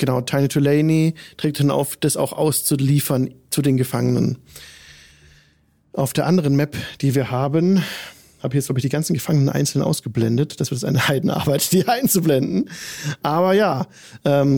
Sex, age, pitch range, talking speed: male, 40-59, 130-160 Hz, 155 wpm